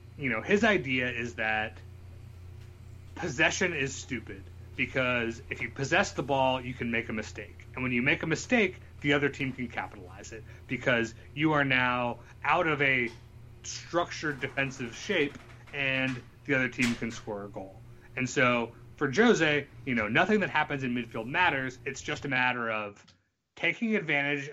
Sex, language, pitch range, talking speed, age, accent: male, English, 115-145 Hz, 170 wpm, 30-49, American